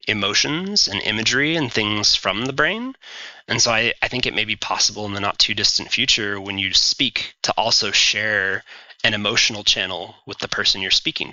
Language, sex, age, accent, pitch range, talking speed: English, male, 20-39, American, 100-115 Hz, 185 wpm